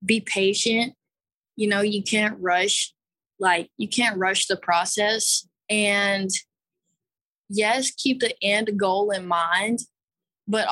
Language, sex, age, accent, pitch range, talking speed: English, female, 20-39, American, 185-215 Hz, 125 wpm